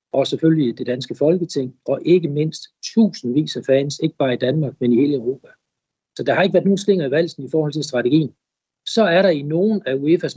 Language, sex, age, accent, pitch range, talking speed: Danish, male, 60-79, native, 135-175 Hz, 225 wpm